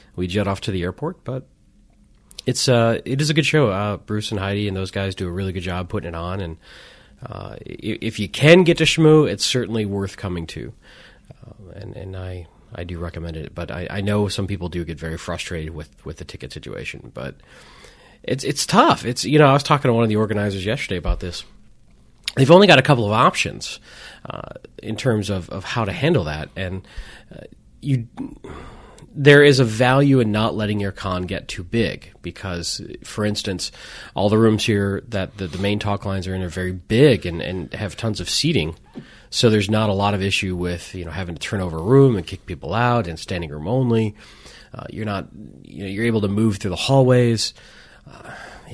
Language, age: English, 30-49